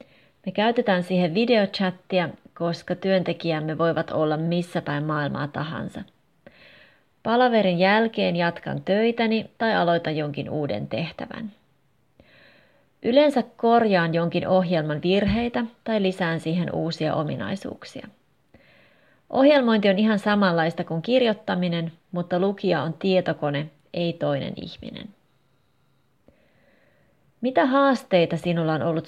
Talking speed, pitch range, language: 100 wpm, 160-205 Hz, Finnish